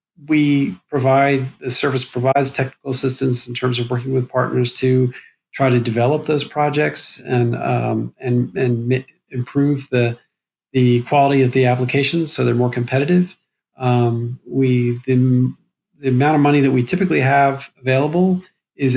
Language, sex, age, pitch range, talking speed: English, male, 40-59, 120-140 Hz, 155 wpm